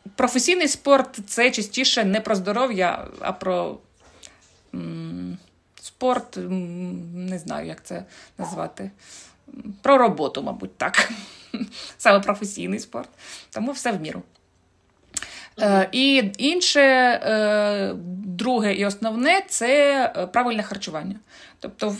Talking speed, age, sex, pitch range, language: 95 wpm, 20-39, female, 180-240 Hz, Ukrainian